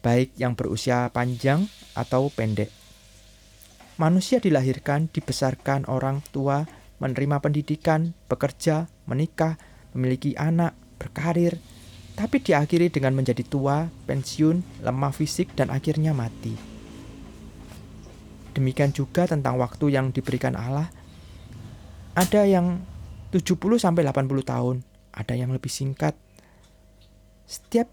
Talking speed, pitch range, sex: 95 wpm, 115-160 Hz, male